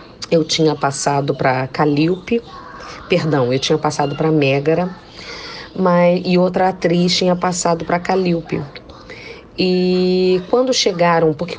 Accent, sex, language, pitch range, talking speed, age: Brazilian, female, English, 155-185 Hz, 120 wpm, 40-59